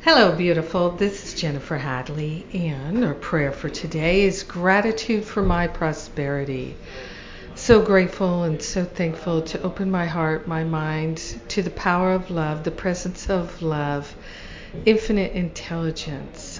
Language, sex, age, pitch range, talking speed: English, female, 50-69, 155-180 Hz, 135 wpm